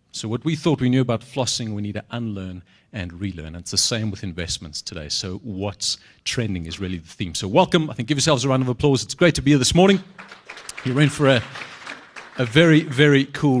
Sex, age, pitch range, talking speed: male, 40-59, 110-140 Hz, 235 wpm